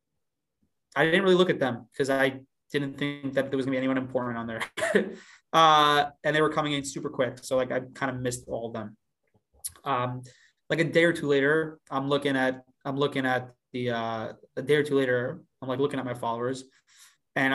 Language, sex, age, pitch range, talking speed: English, male, 20-39, 125-155 Hz, 215 wpm